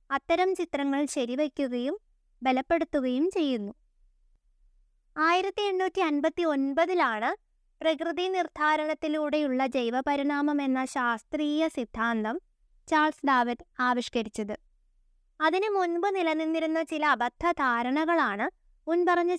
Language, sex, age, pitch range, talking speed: Malayalam, female, 20-39, 265-340 Hz, 70 wpm